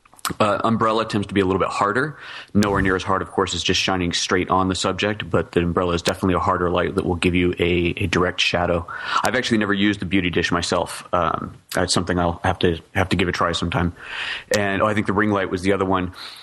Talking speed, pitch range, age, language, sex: 250 wpm, 90-100 Hz, 30-49, English, male